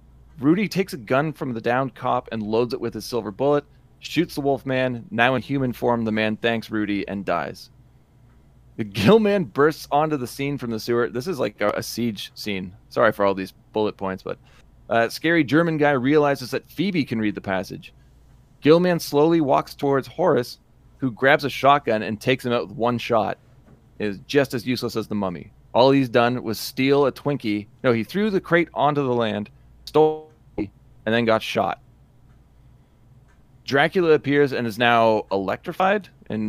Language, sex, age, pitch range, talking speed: English, male, 30-49, 110-140 Hz, 185 wpm